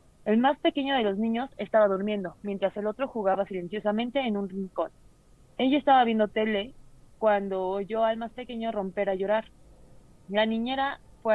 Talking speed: 165 wpm